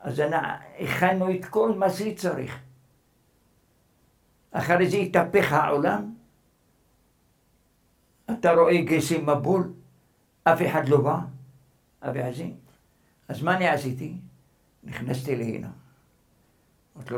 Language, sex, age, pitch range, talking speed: Hebrew, male, 60-79, 130-165 Hz, 100 wpm